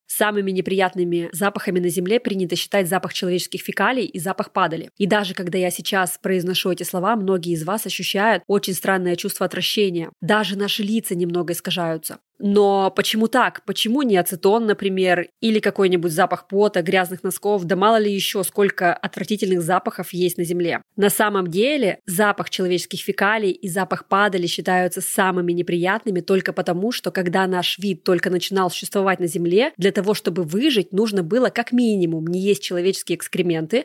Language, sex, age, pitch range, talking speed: Russian, female, 20-39, 180-210 Hz, 165 wpm